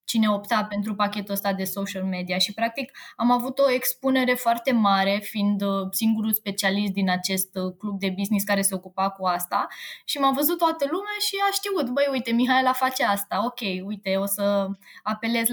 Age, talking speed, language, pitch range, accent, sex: 20-39, 185 wpm, Romanian, 205-270 Hz, native, female